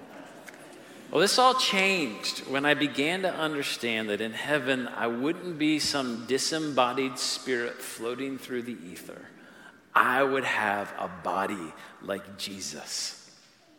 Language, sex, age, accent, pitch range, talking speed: English, male, 40-59, American, 110-155 Hz, 125 wpm